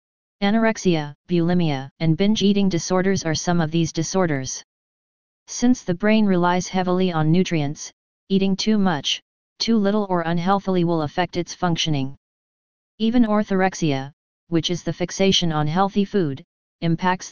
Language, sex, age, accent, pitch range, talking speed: English, female, 30-49, American, 165-190 Hz, 135 wpm